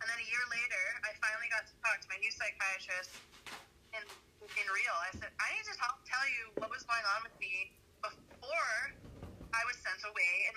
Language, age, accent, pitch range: English, 30-49, American, 205-270 Hz